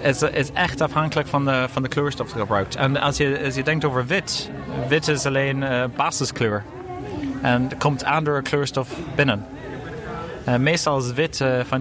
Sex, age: male, 30-49